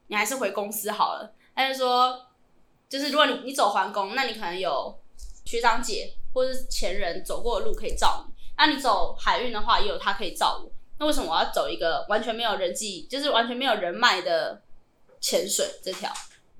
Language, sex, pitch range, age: Chinese, female, 205-275 Hz, 10-29